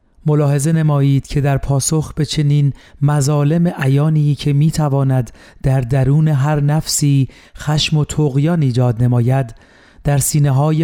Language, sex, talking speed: Persian, male, 125 wpm